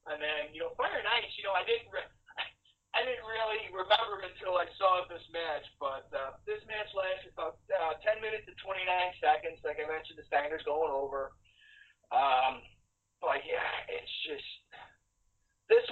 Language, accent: English, American